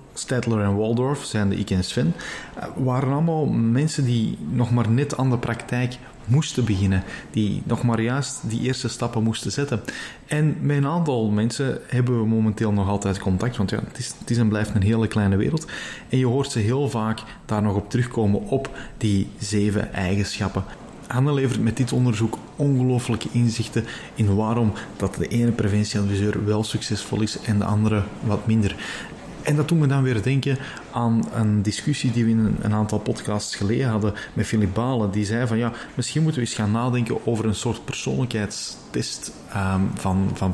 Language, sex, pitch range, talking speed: Dutch, male, 105-125 Hz, 180 wpm